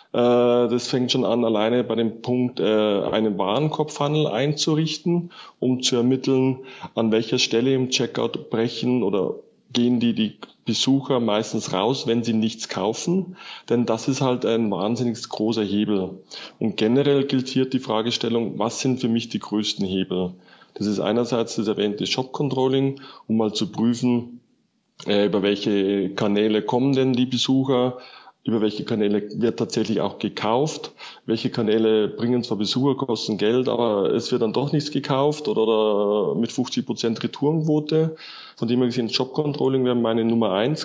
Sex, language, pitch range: male, German, 110-135 Hz